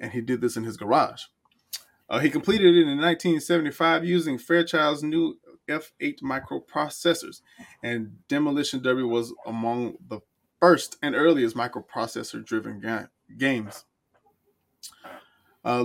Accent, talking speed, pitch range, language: American, 115 wpm, 125-175 Hz, English